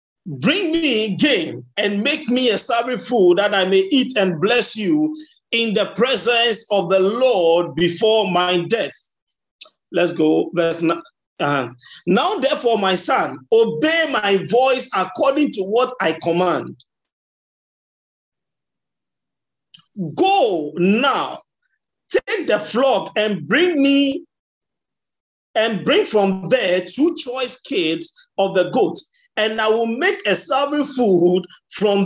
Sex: male